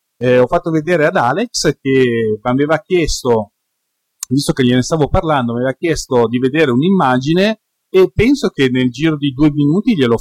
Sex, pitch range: male, 115-155 Hz